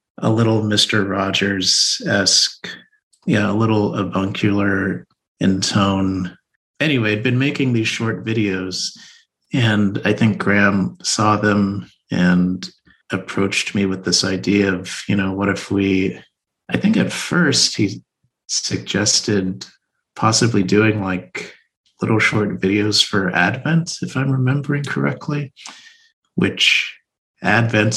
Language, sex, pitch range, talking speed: English, male, 95-110 Hz, 120 wpm